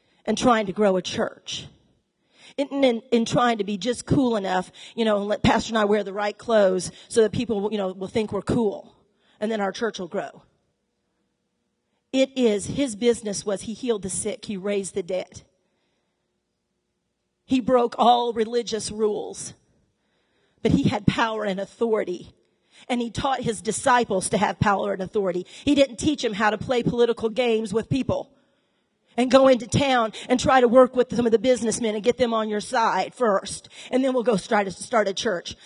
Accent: American